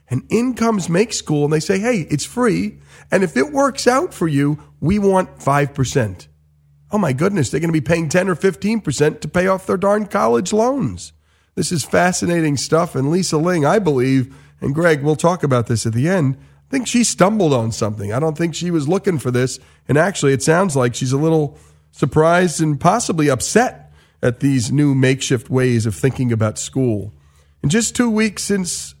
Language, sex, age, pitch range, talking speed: English, male, 40-59, 125-195 Hz, 200 wpm